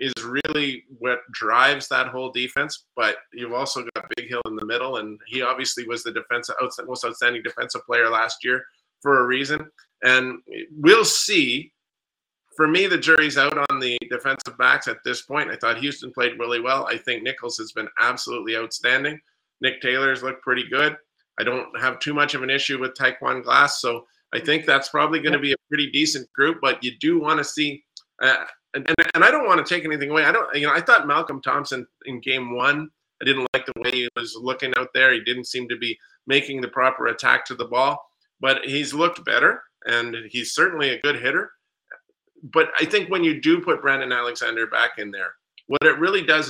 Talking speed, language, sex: 210 wpm, English, male